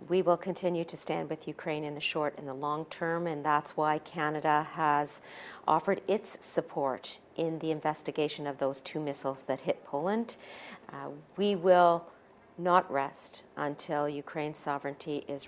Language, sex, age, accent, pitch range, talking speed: English, female, 50-69, American, 150-180 Hz, 160 wpm